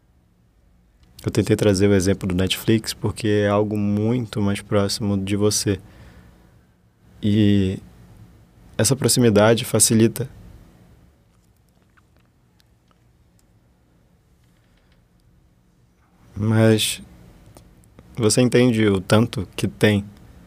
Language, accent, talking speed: Portuguese, Brazilian, 75 wpm